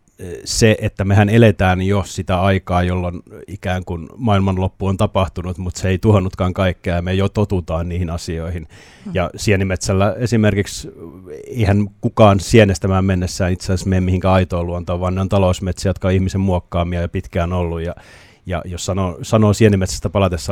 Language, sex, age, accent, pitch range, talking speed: Finnish, male, 30-49, native, 90-100 Hz, 160 wpm